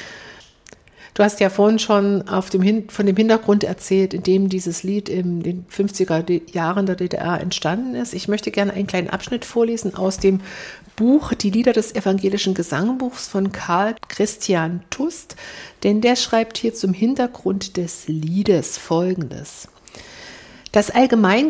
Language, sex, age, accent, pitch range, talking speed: German, female, 60-79, German, 185-220 Hz, 150 wpm